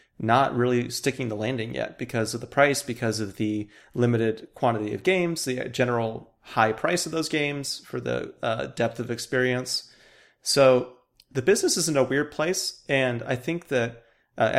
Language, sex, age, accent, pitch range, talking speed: English, male, 30-49, American, 110-130 Hz, 175 wpm